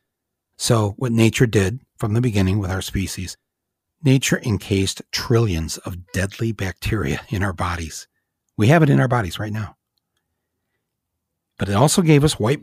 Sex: male